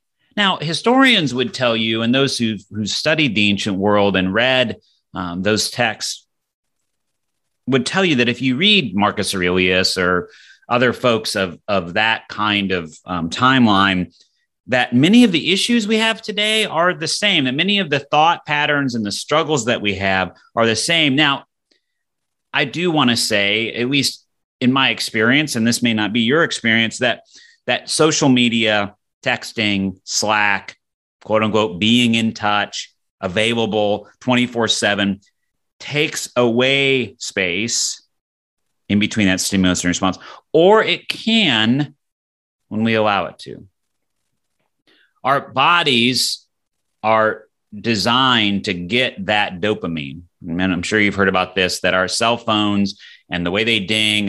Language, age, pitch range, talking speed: English, 30-49, 100-130 Hz, 150 wpm